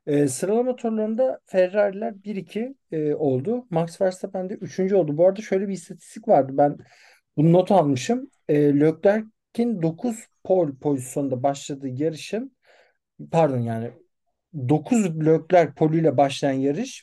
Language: Turkish